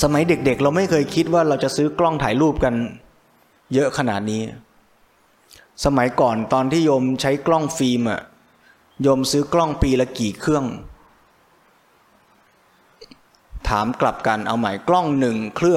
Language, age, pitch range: Thai, 20-39, 120-150 Hz